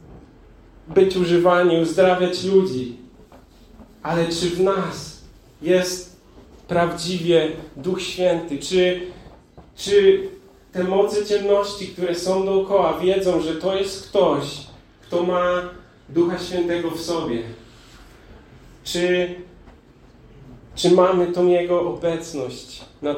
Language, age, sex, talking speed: Polish, 30-49, male, 100 wpm